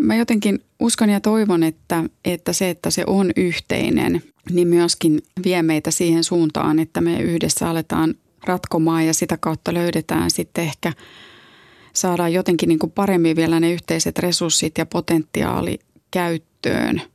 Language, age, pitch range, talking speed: Finnish, 30-49, 160-185 Hz, 140 wpm